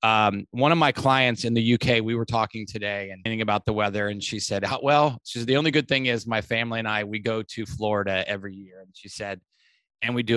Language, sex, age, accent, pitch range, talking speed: English, male, 30-49, American, 105-130 Hz, 250 wpm